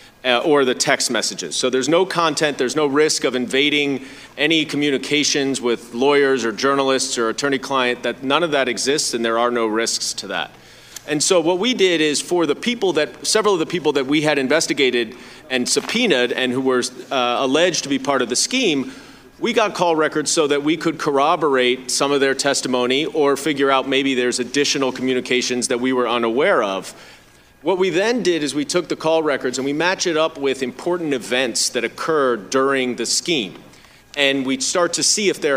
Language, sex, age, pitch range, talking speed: English, male, 30-49, 130-155 Hz, 200 wpm